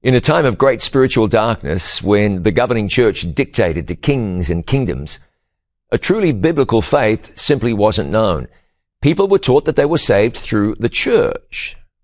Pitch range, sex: 95-120 Hz, male